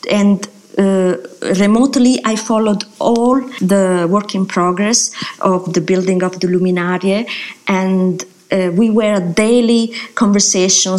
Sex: female